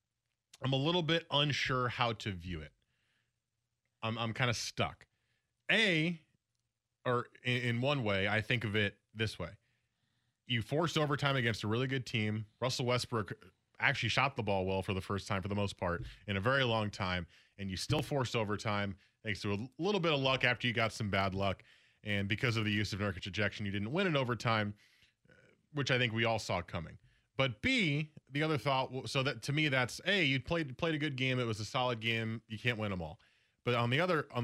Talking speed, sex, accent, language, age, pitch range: 215 wpm, male, American, English, 20-39, 105-135 Hz